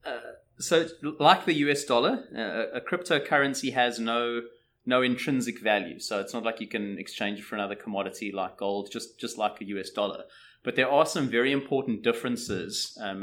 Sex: male